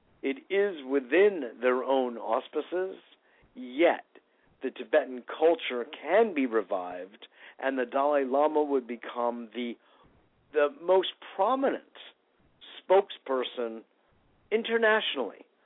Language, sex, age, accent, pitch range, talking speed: English, male, 50-69, American, 115-150 Hz, 95 wpm